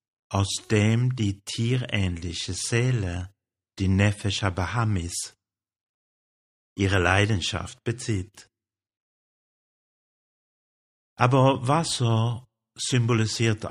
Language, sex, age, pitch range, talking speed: German, male, 60-79, 95-115 Hz, 60 wpm